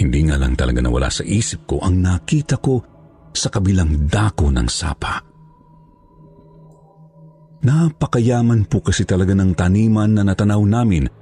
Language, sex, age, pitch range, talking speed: Filipino, male, 50-69, 85-135 Hz, 135 wpm